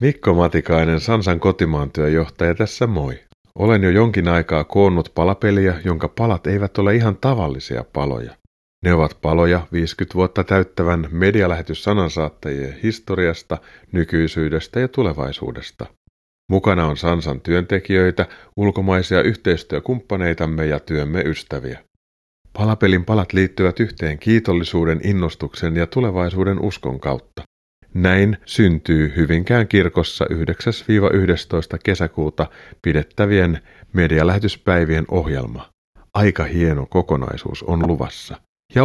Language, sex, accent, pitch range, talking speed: Finnish, male, native, 80-105 Hz, 100 wpm